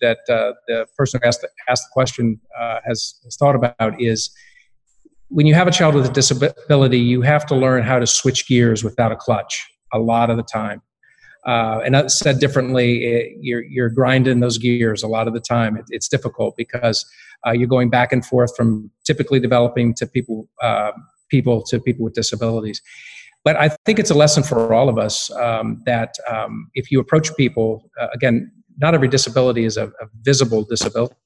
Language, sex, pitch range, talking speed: English, male, 115-140 Hz, 185 wpm